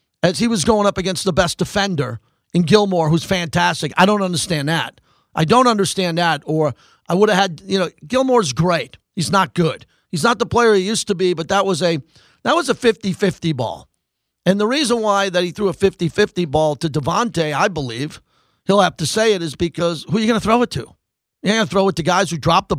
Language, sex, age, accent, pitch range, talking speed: English, male, 40-59, American, 155-205 Hz, 235 wpm